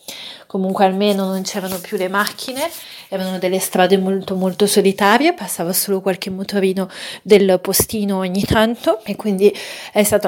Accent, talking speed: native, 145 wpm